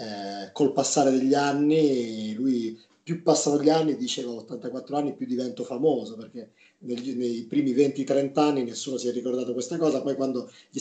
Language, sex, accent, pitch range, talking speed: Italian, male, native, 115-140 Hz, 165 wpm